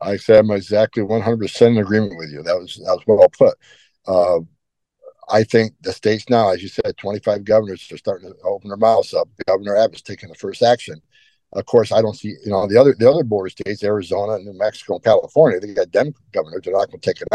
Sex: male